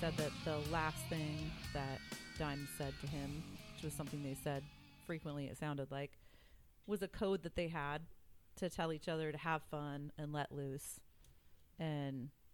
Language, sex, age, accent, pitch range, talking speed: English, female, 30-49, American, 135-155 Hz, 170 wpm